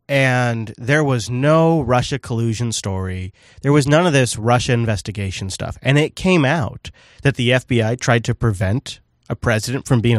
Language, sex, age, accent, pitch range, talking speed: English, male, 30-49, American, 110-155 Hz, 170 wpm